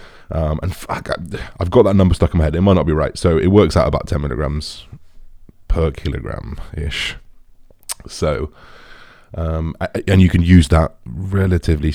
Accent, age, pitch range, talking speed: British, 20-39, 80-90 Hz, 170 wpm